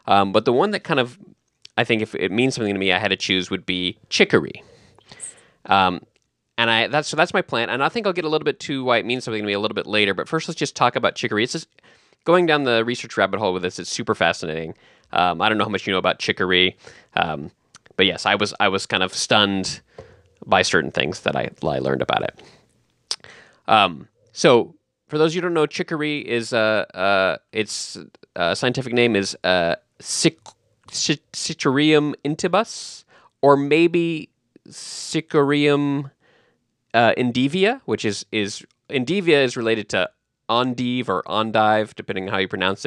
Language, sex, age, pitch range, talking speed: English, male, 20-39, 100-145 Hz, 195 wpm